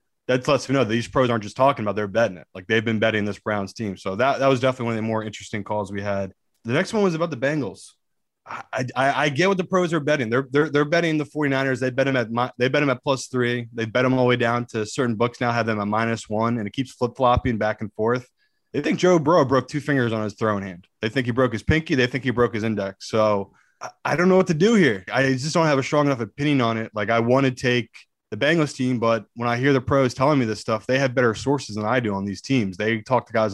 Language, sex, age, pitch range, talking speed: English, male, 20-39, 110-140 Hz, 295 wpm